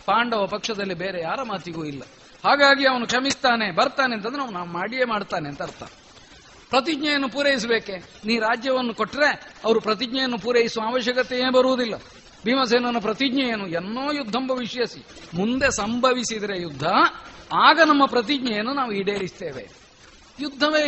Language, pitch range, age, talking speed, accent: Kannada, 180-250 Hz, 50-69, 115 wpm, native